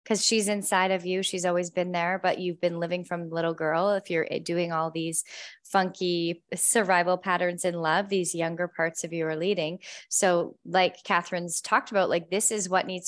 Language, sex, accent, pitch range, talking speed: English, female, American, 180-215 Hz, 195 wpm